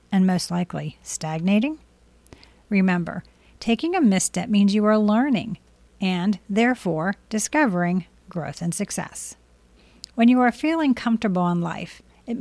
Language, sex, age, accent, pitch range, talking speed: English, female, 40-59, American, 185-230 Hz, 125 wpm